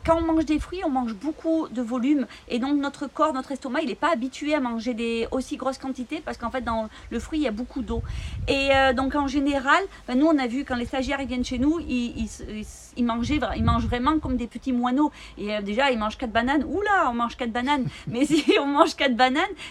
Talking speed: 245 wpm